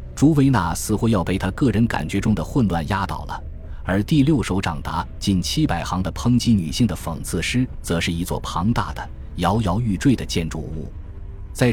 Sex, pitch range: male, 80-110 Hz